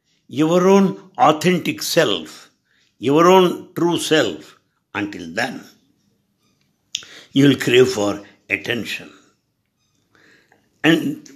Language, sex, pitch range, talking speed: English, male, 125-180 Hz, 85 wpm